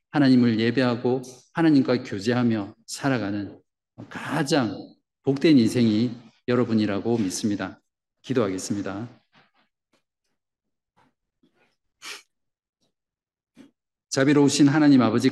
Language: Korean